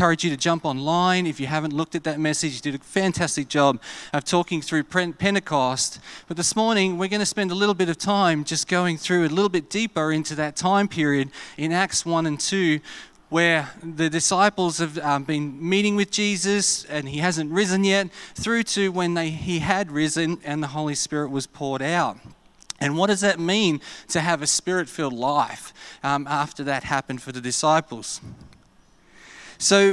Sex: male